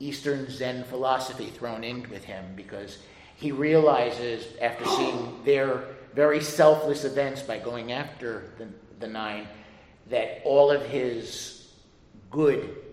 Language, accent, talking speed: English, American, 125 wpm